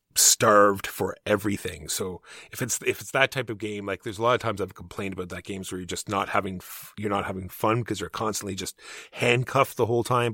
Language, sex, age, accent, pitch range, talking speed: English, male, 30-49, American, 95-110 Hz, 240 wpm